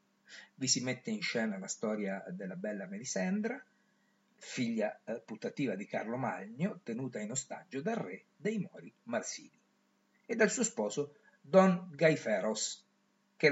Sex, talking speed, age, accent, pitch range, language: male, 135 wpm, 50-69, native, 160-215 Hz, Italian